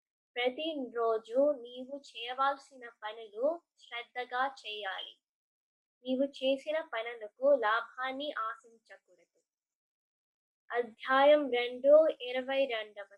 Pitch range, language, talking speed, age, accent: 245-295 Hz, Telugu, 75 wpm, 20-39, native